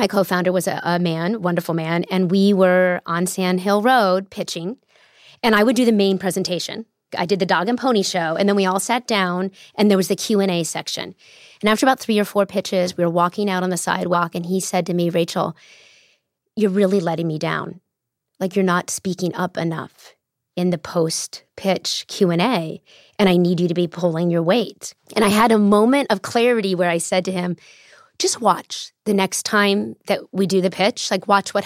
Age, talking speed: 30-49, 210 wpm